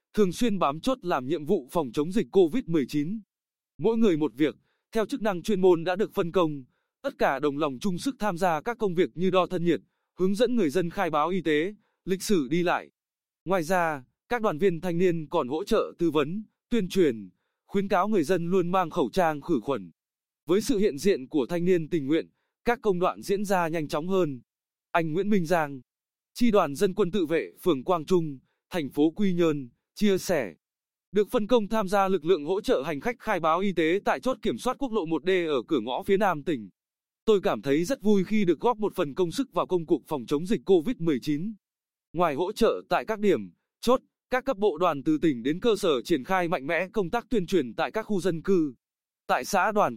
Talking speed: 230 wpm